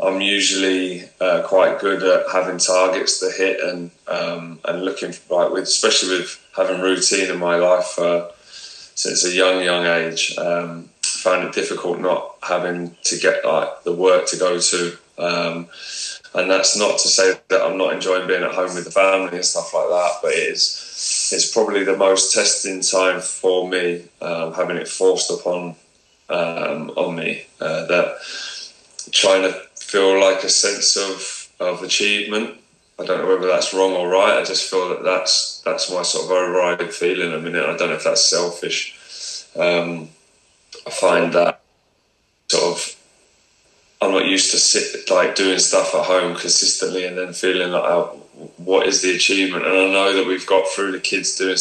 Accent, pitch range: British, 90-95 Hz